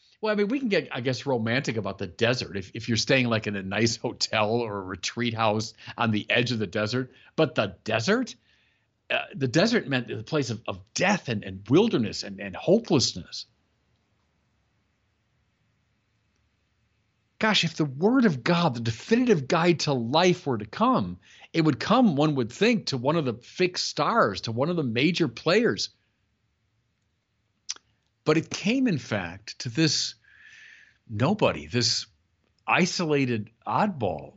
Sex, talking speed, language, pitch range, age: male, 160 wpm, English, 105-140 Hz, 50-69